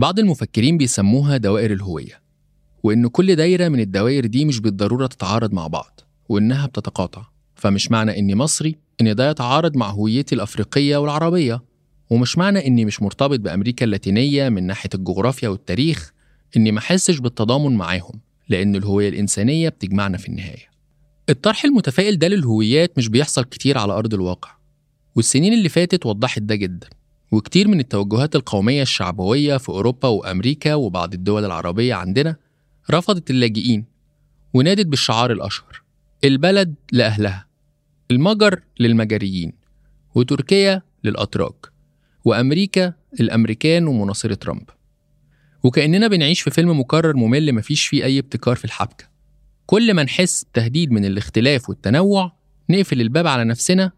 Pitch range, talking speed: 110-150 Hz, 130 wpm